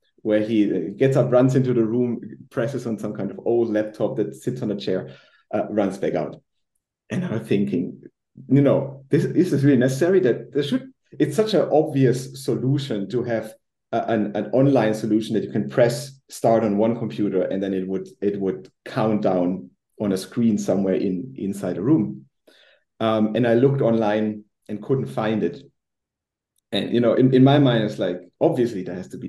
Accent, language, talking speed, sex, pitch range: German, English, 195 wpm, male, 100-135 Hz